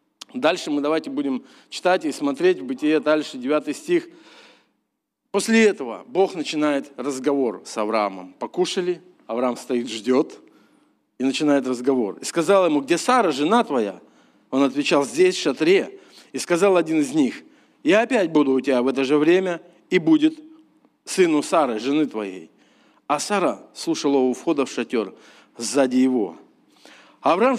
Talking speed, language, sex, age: 150 wpm, Russian, male, 40-59